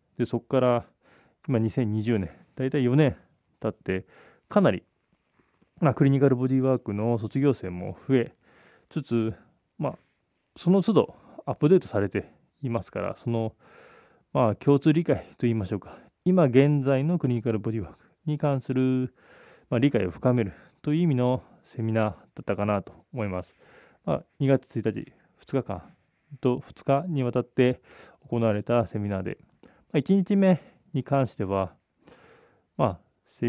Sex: male